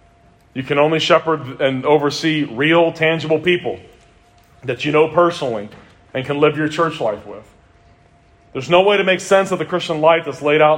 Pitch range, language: 125-165 Hz, English